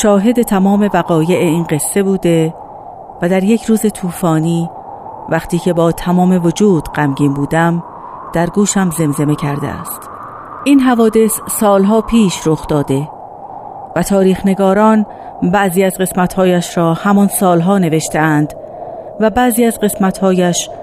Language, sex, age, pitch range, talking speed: Persian, female, 40-59, 165-235 Hz, 125 wpm